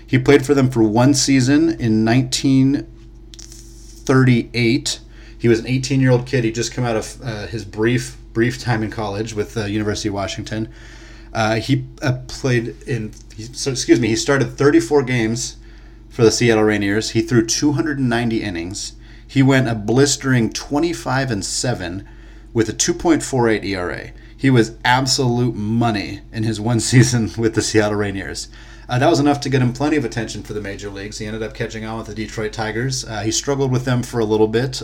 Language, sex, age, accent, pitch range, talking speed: English, male, 30-49, American, 110-125 Hz, 185 wpm